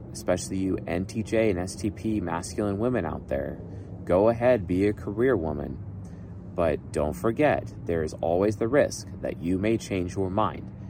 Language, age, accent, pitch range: English, 30-49, American, 90-110 Hz